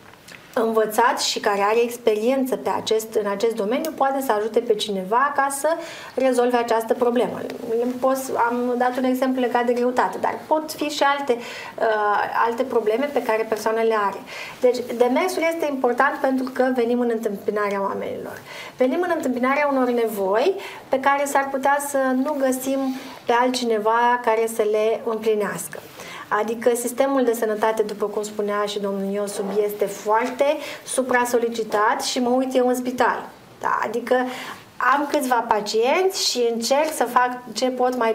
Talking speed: 150 wpm